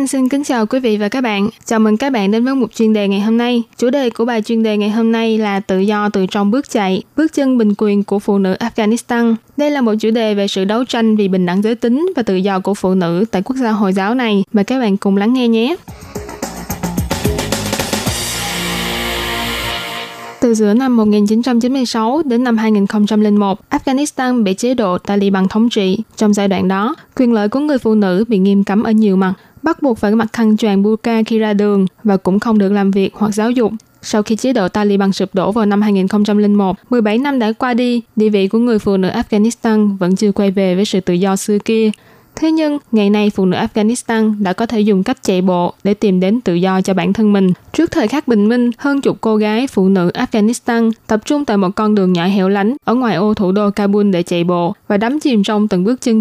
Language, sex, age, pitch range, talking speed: Vietnamese, female, 20-39, 195-235 Hz, 235 wpm